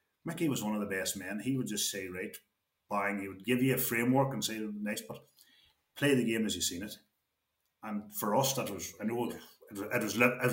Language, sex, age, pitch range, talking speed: English, male, 30-49, 105-125 Hz, 230 wpm